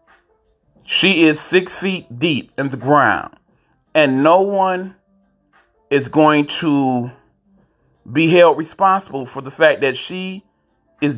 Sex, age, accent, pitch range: male, 30-49, American, 135-185 Hz